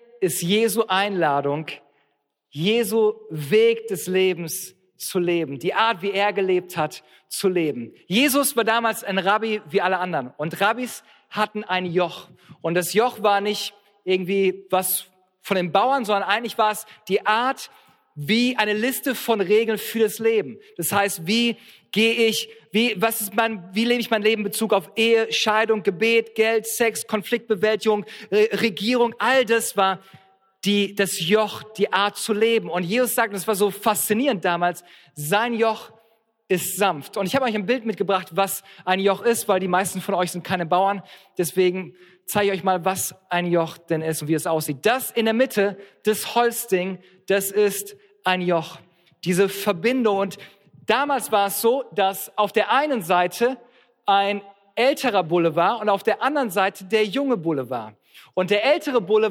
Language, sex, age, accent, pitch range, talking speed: German, male, 40-59, German, 185-225 Hz, 175 wpm